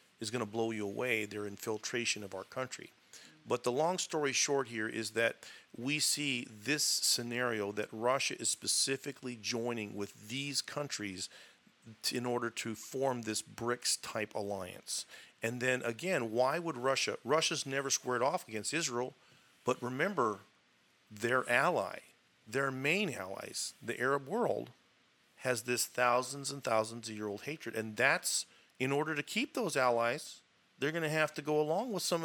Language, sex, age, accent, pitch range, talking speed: English, male, 40-59, American, 115-150 Hz, 160 wpm